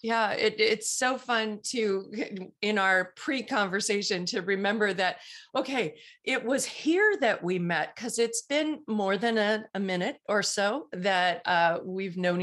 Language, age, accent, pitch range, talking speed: English, 40-59, American, 165-210 Hz, 160 wpm